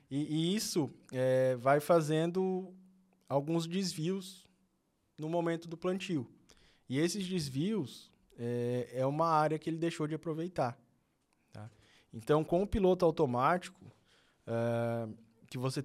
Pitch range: 125-165 Hz